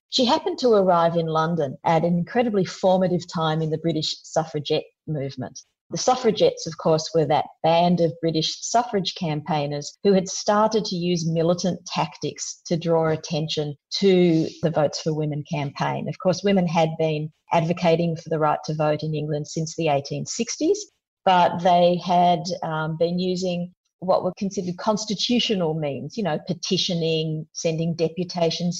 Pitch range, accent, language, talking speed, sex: 155-190 Hz, Australian, English, 155 wpm, female